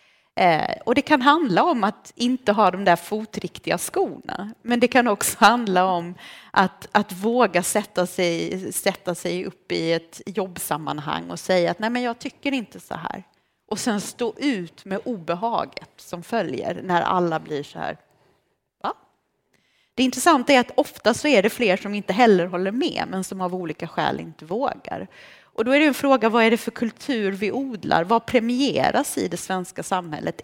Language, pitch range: English, 180-240 Hz